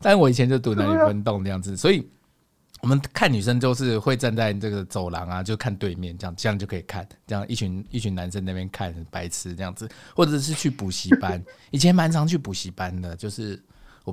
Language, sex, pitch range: Chinese, male, 100-155 Hz